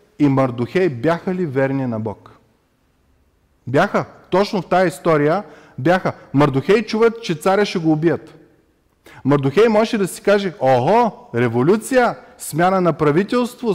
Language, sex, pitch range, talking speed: Bulgarian, male, 125-190 Hz, 130 wpm